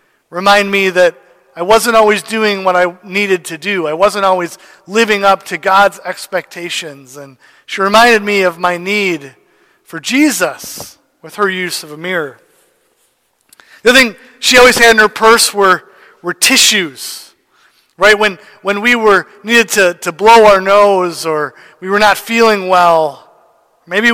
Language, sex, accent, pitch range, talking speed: English, male, American, 175-210 Hz, 160 wpm